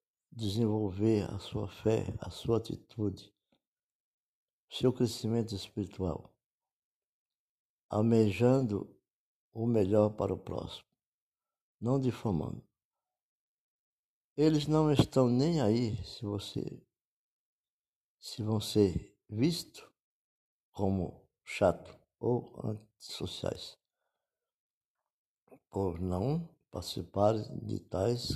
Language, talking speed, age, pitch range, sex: Portuguese, 80 wpm, 60-79, 100-120 Hz, male